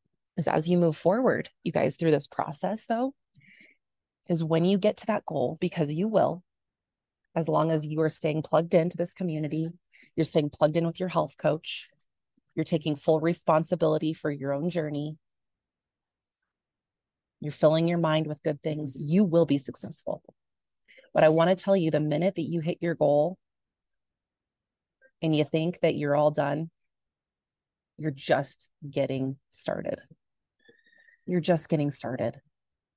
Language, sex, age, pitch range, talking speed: English, female, 30-49, 145-170 Hz, 155 wpm